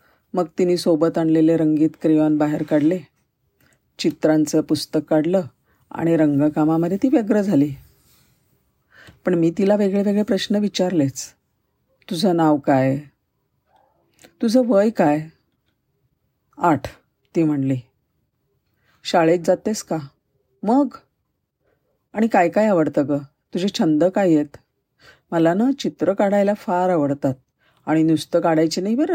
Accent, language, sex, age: native, Marathi, female, 50-69